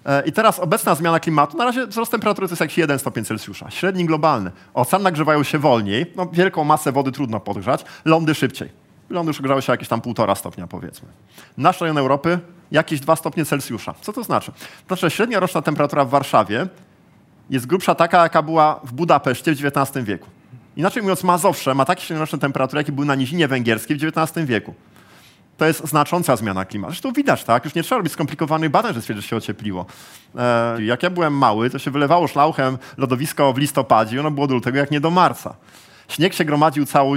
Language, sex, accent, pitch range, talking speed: Polish, male, native, 125-160 Hz, 195 wpm